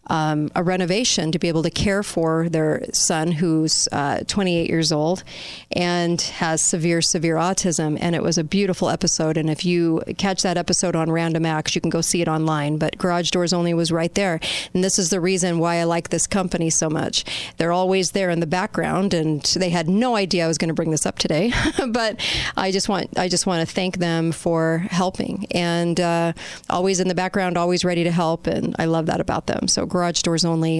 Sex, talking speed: female, 215 wpm